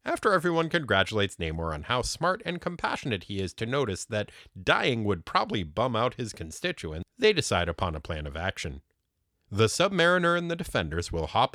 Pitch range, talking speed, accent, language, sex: 85-135 Hz, 180 wpm, American, English, male